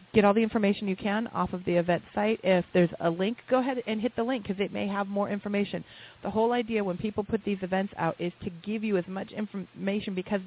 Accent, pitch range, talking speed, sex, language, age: American, 170-205 Hz, 250 wpm, female, English, 30-49